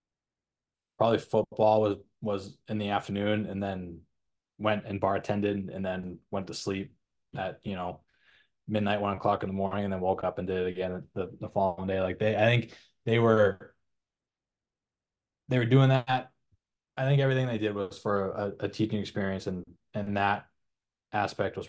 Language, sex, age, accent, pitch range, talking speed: English, male, 20-39, American, 95-105 Hz, 180 wpm